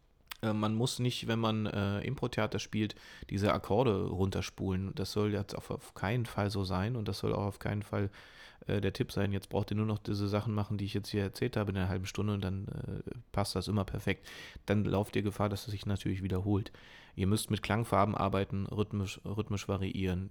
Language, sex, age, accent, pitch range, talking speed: German, male, 30-49, German, 95-105 Hz, 215 wpm